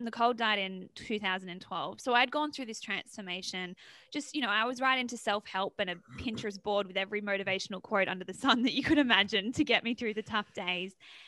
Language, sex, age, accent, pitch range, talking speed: English, female, 20-39, Australian, 190-230 Hz, 215 wpm